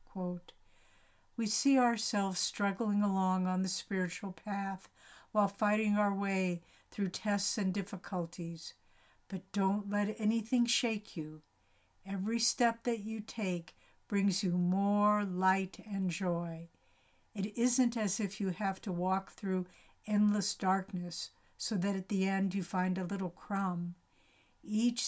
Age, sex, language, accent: 60-79, female, English, American